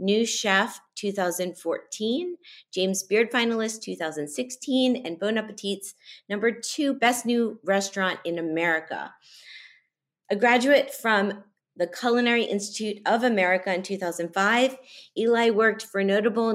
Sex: female